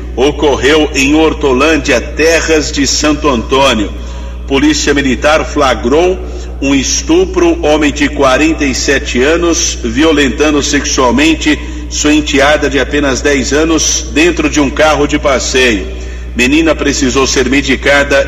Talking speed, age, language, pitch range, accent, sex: 110 wpm, 50-69, Portuguese, 130-155 Hz, Brazilian, male